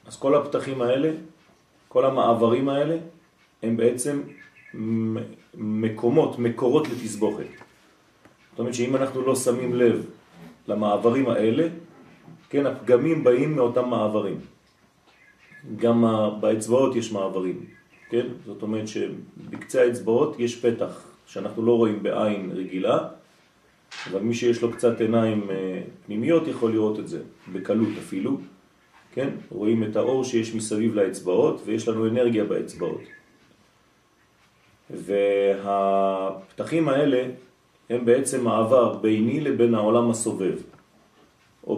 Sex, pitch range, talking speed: male, 110-135 Hz, 100 wpm